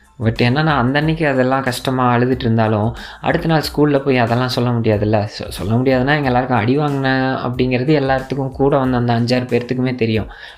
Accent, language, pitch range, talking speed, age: native, Tamil, 110-140 Hz, 160 wpm, 20-39